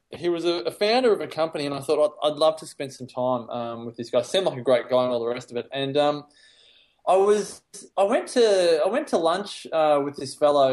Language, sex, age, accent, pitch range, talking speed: English, male, 20-39, Australian, 130-165 Hz, 250 wpm